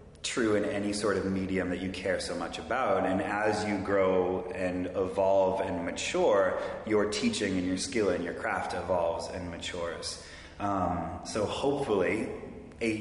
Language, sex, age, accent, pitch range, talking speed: English, male, 30-49, American, 90-100 Hz, 160 wpm